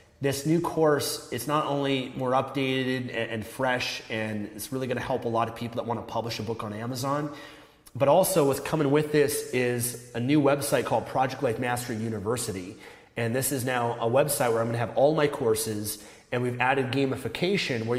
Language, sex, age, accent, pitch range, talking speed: English, male, 30-49, American, 115-145 Hz, 195 wpm